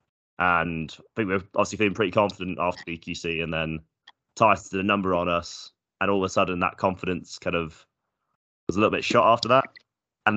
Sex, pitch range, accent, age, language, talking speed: male, 85-100 Hz, British, 20-39, English, 210 wpm